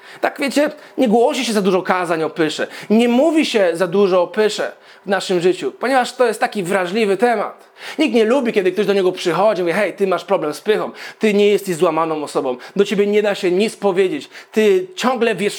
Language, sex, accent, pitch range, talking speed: Polish, male, native, 200-250 Hz, 220 wpm